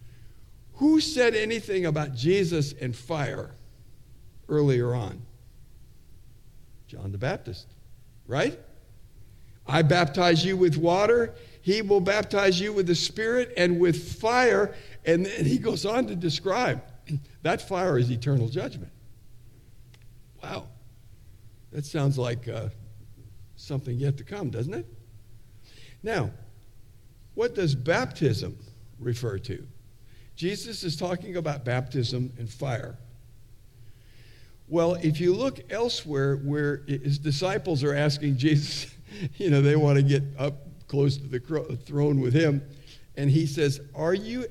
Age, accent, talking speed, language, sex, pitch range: 60-79, American, 125 wpm, English, male, 115-155 Hz